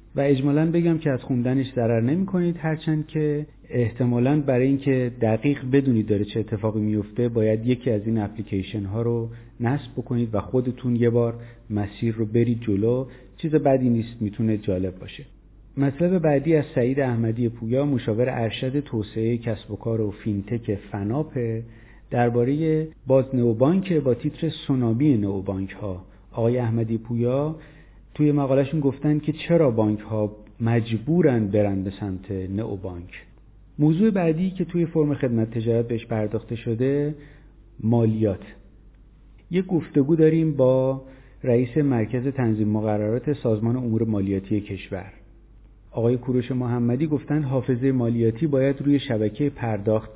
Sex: male